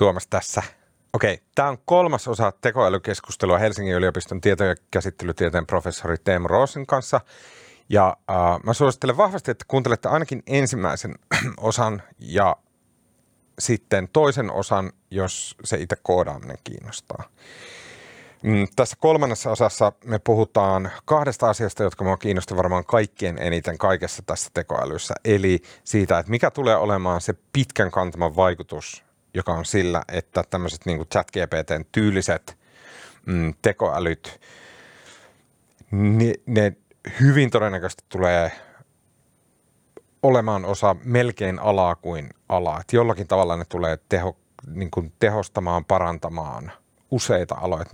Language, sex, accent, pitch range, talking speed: Finnish, male, native, 90-115 Hz, 120 wpm